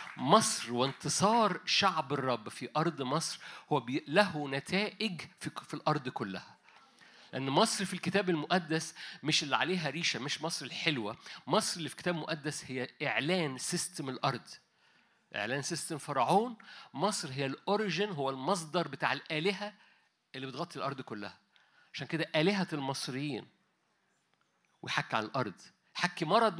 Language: Arabic